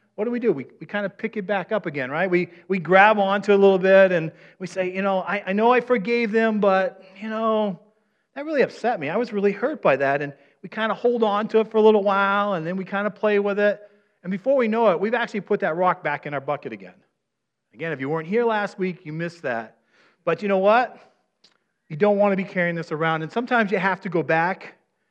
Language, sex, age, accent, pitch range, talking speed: English, male, 40-59, American, 165-210 Hz, 265 wpm